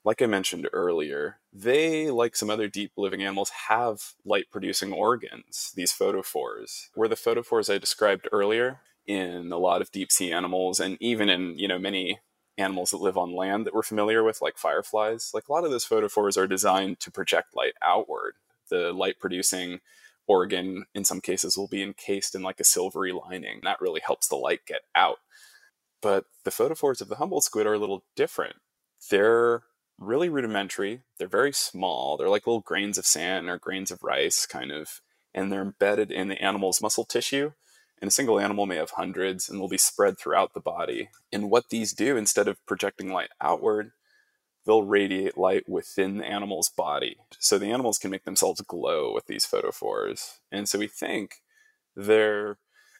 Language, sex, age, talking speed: English, male, 20-39, 185 wpm